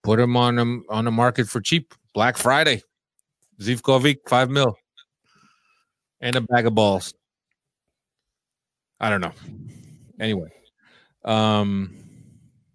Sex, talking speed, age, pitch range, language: male, 115 wpm, 30-49, 100-125 Hz, English